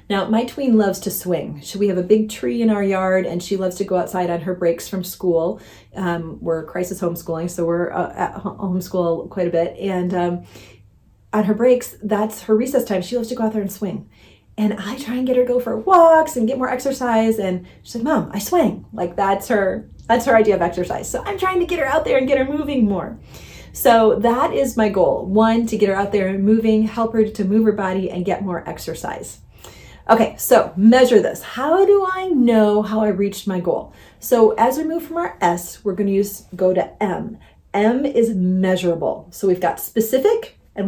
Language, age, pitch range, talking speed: English, 30-49, 180-235 Hz, 225 wpm